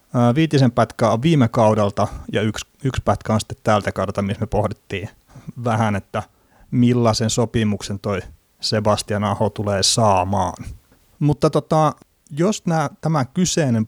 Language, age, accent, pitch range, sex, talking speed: Finnish, 30-49, native, 100-120 Hz, male, 135 wpm